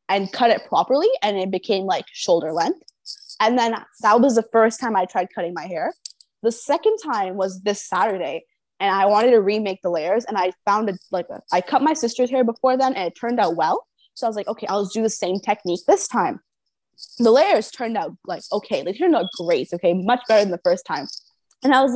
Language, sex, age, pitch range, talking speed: English, female, 20-39, 195-260 Hz, 230 wpm